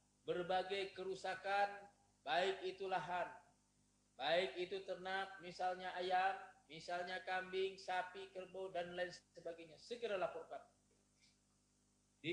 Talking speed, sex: 95 wpm, male